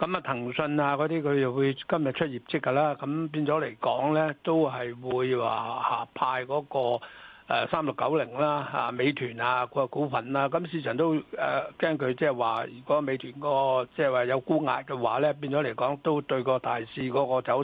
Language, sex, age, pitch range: Chinese, male, 60-79, 130-160 Hz